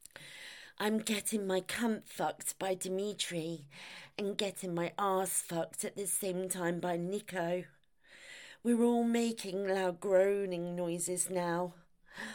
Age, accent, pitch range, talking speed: 40-59, British, 195-245 Hz, 120 wpm